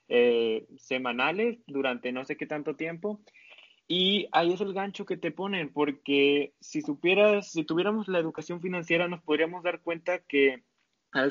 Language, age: Spanish, 20-39